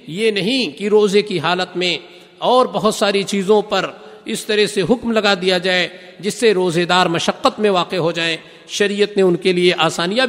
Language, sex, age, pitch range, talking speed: Urdu, male, 50-69, 160-210 Hz, 200 wpm